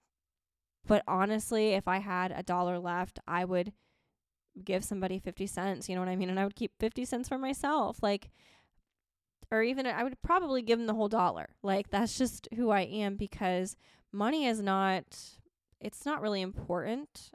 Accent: American